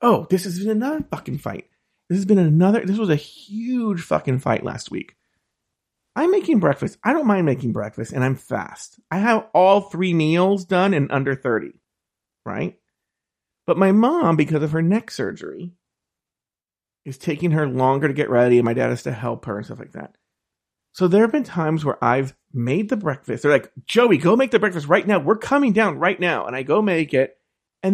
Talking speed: 205 wpm